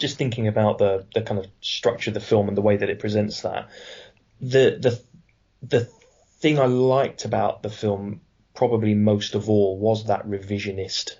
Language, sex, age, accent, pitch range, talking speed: English, male, 20-39, British, 100-115 Hz, 180 wpm